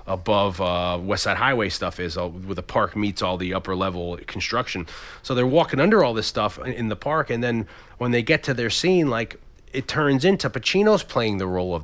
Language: English